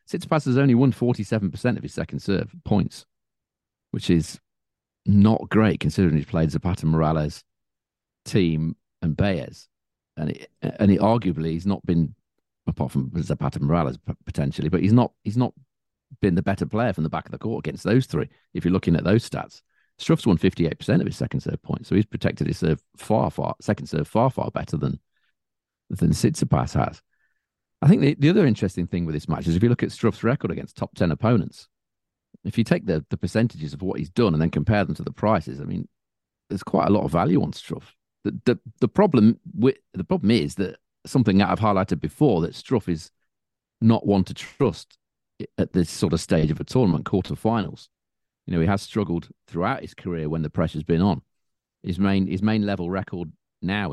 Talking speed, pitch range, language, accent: 200 wpm, 80-110 Hz, English, British